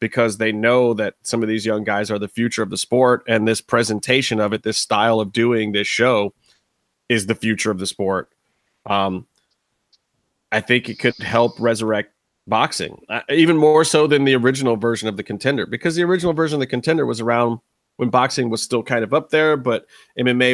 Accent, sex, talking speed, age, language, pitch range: American, male, 205 wpm, 30-49, English, 110-130 Hz